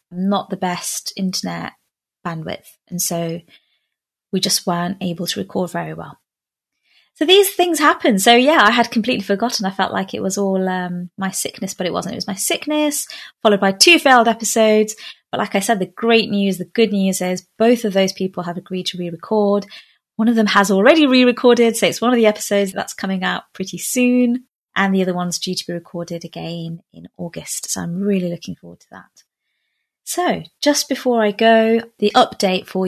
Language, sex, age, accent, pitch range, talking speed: English, female, 20-39, British, 190-235 Hz, 195 wpm